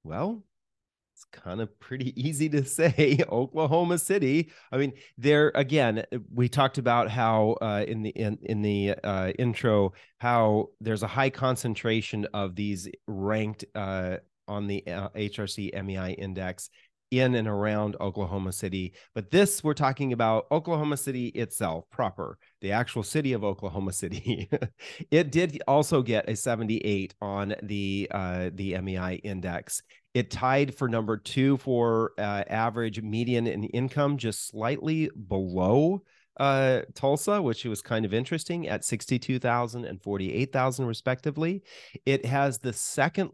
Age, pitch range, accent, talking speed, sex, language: 30-49, 105-135 Hz, American, 145 wpm, male, English